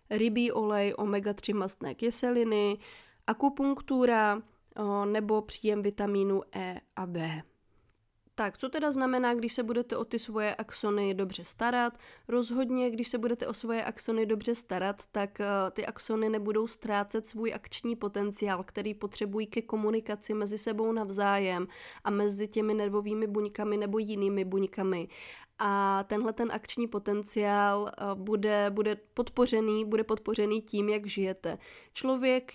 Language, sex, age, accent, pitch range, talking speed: Czech, female, 20-39, native, 200-220 Hz, 130 wpm